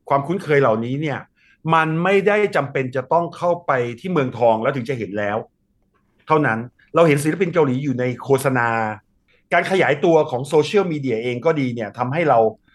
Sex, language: male, Thai